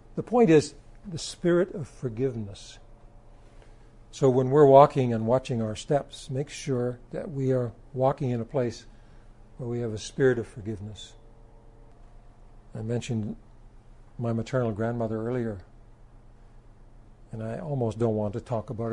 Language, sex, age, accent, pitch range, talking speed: English, male, 60-79, American, 115-135 Hz, 145 wpm